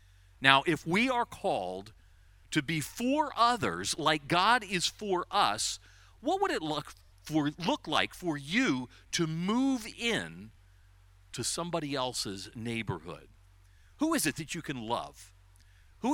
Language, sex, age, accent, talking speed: English, male, 50-69, American, 140 wpm